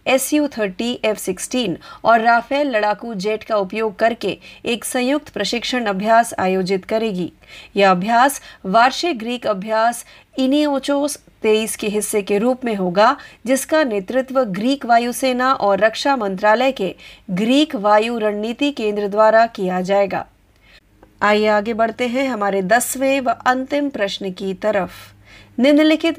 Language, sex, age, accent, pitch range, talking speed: Marathi, female, 30-49, native, 205-255 Hz, 115 wpm